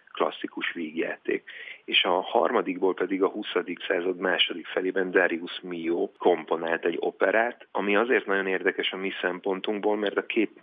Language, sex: Hungarian, male